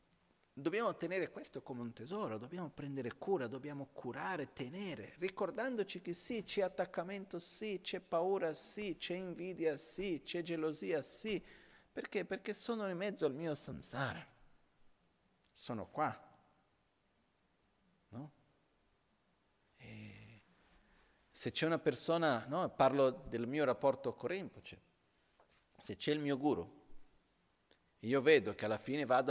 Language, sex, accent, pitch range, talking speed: Italian, male, native, 135-180 Hz, 125 wpm